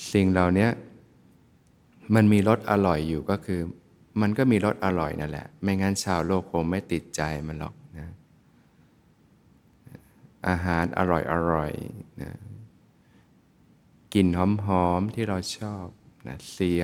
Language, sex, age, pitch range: Thai, male, 20-39, 85-100 Hz